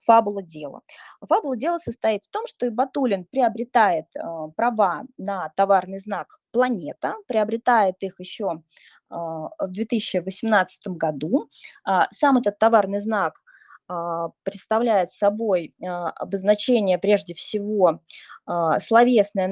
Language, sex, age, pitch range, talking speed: Russian, female, 20-39, 185-250 Hz, 95 wpm